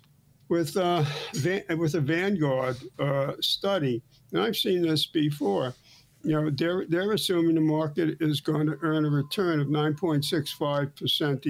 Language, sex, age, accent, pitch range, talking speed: English, male, 60-79, American, 135-165 Hz, 140 wpm